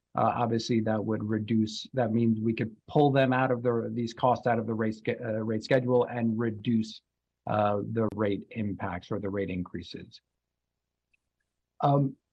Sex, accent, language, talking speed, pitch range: male, American, English, 165 wpm, 120-140 Hz